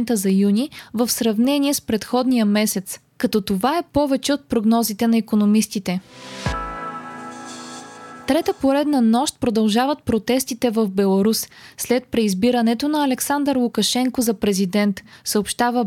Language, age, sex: Bulgarian, 20-39, female